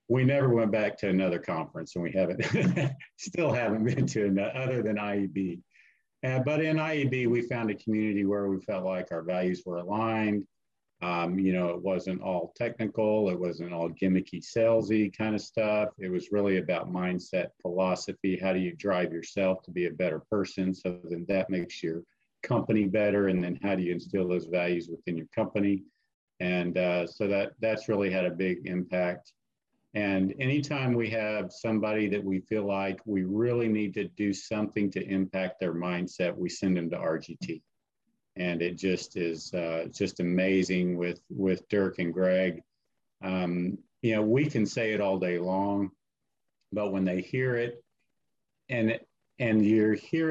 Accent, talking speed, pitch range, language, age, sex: American, 175 wpm, 90-110 Hz, English, 50-69, male